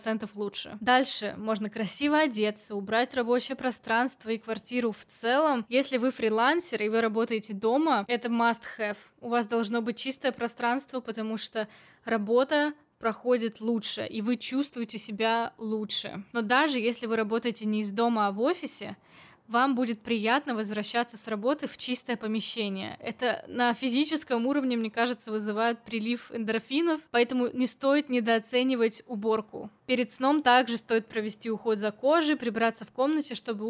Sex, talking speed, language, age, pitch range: female, 150 wpm, Russian, 20-39, 220-255 Hz